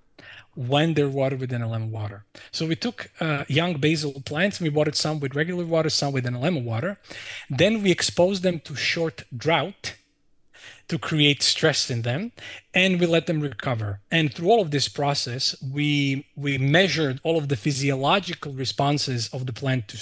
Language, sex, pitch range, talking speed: English, male, 130-165 Hz, 175 wpm